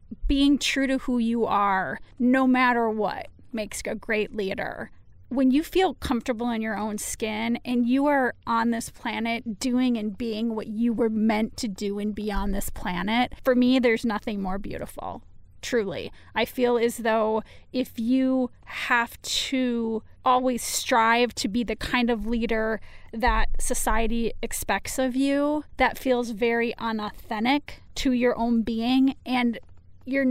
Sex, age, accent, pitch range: female, 30-49, American, 225-255 Hz